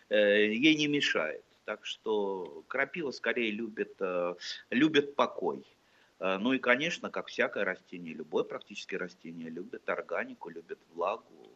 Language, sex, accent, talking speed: Russian, male, native, 120 wpm